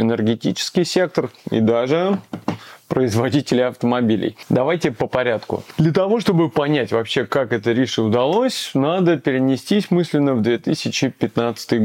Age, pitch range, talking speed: 30-49, 120-165 Hz, 115 wpm